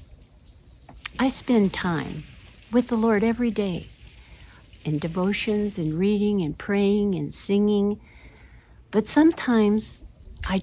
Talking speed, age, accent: 105 wpm, 60-79, American